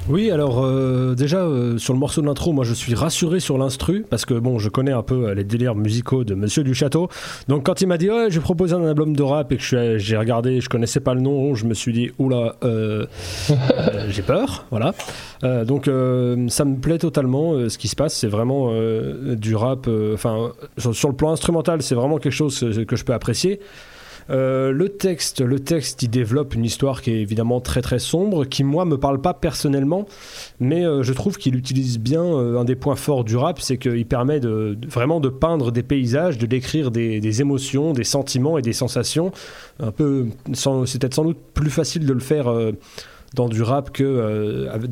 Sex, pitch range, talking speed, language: male, 120-150 Hz, 230 wpm, French